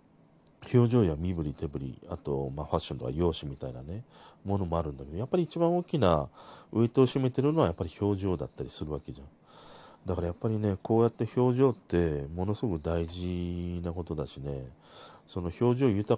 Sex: male